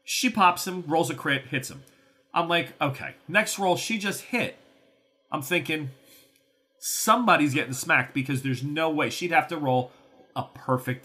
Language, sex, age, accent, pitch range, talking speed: English, male, 40-59, American, 135-190 Hz, 170 wpm